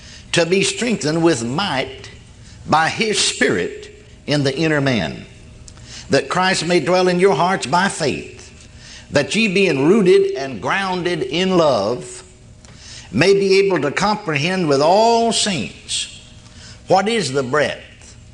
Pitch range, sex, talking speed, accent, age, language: 140-195 Hz, male, 135 wpm, American, 60-79, English